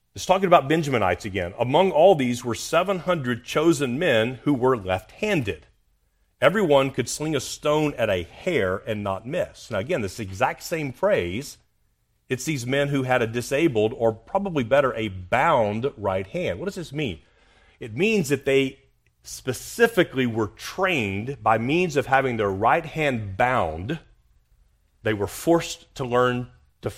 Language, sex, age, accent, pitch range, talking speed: English, male, 40-59, American, 100-140 Hz, 160 wpm